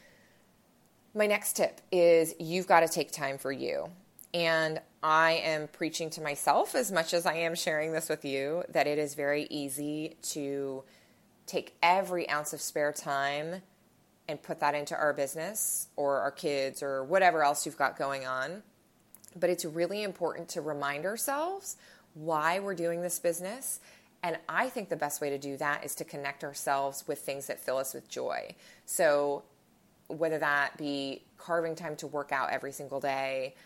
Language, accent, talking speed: English, American, 175 wpm